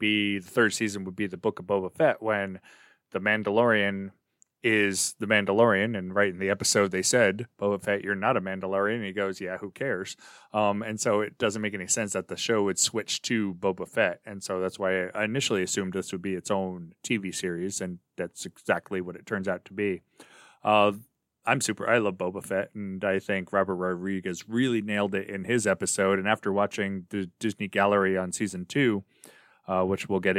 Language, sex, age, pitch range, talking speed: English, male, 30-49, 95-115 Hz, 205 wpm